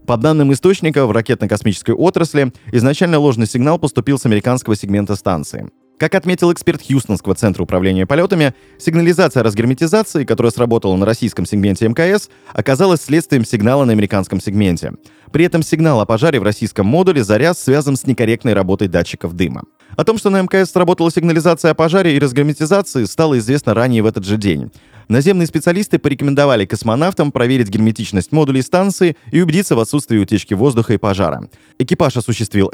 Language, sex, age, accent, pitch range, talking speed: Russian, male, 20-39, native, 100-155 Hz, 160 wpm